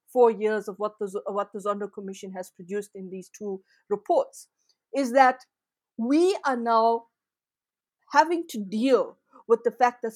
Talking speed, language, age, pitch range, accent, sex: 160 wpm, English, 50-69, 210-260 Hz, Indian, female